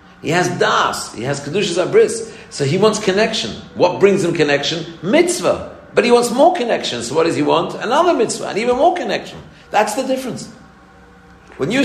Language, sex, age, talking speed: English, male, 50-69, 185 wpm